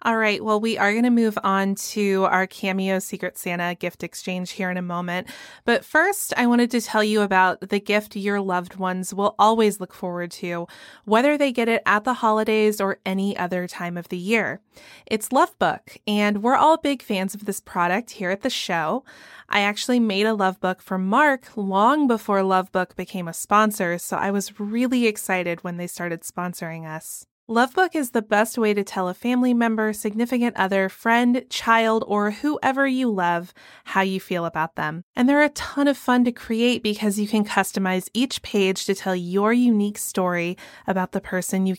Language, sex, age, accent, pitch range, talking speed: English, female, 20-39, American, 185-235 Hz, 195 wpm